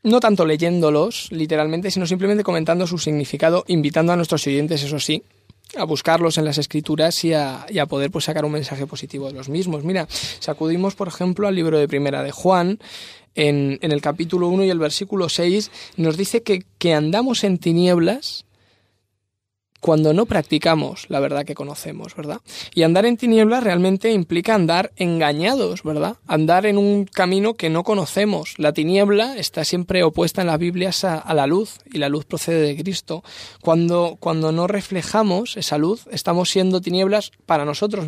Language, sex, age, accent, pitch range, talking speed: Spanish, male, 20-39, Spanish, 150-190 Hz, 175 wpm